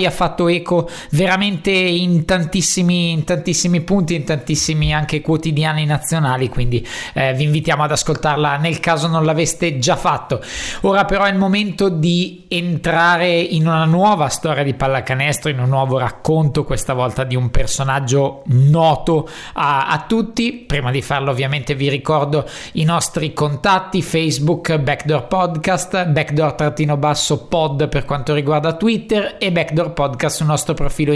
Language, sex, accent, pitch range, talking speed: Italian, male, native, 150-180 Hz, 150 wpm